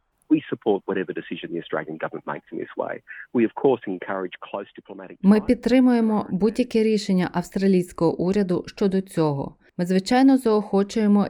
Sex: female